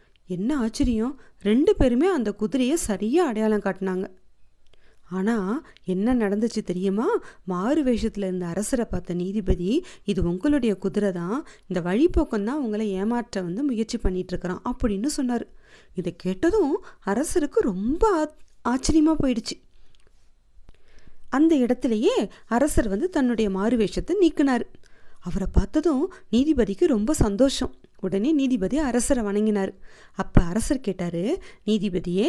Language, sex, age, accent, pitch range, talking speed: English, female, 30-49, Indian, 200-295 Hz, 105 wpm